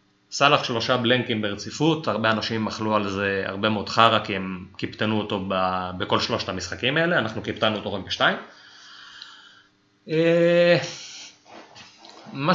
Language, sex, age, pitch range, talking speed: Hebrew, male, 20-39, 110-130 Hz, 130 wpm